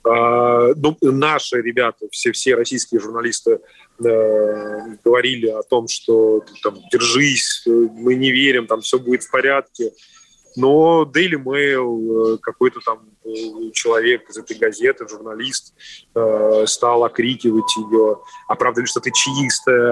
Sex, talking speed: male, 125 wpm